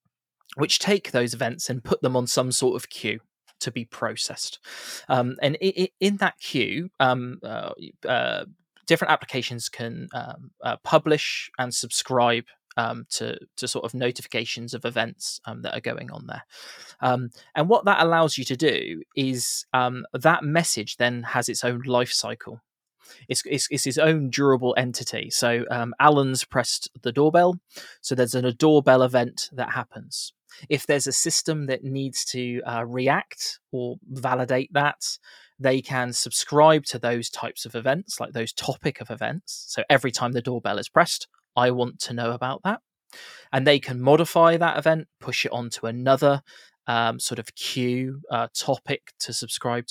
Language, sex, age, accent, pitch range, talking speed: English, male, 20-39, British, 120-150 Hz, 170 wpm